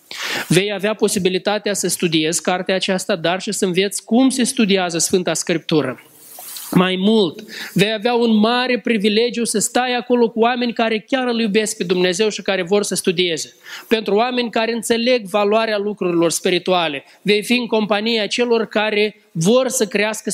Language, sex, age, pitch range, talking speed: Romanian, male, 20-39, 175-220 Hz, 165 wpm